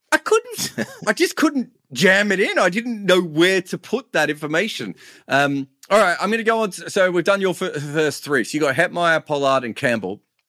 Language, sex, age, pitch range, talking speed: English, male, 30-49, 120-175 Hz, 210 wpm